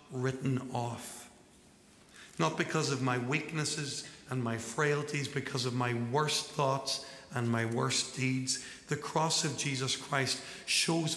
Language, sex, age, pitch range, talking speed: English, male, 60-79, 120-140 Hz, 135 wpm